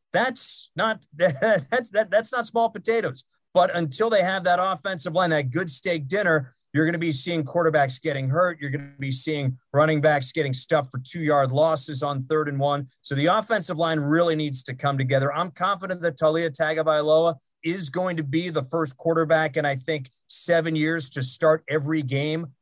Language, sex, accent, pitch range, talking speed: English, male, American, 135-165 Hz, 195 wpm